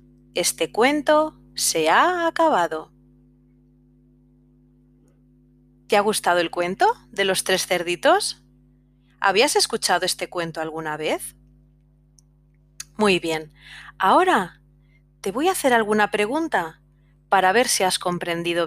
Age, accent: 30-49, Spanish